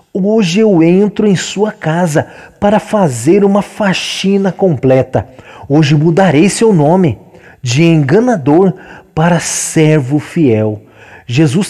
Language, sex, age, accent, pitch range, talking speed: Portuguese, male, 40-59, Brazilian, 140-195 Hz, 110 wpm